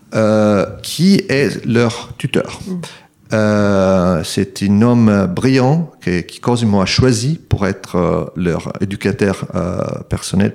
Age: 40-59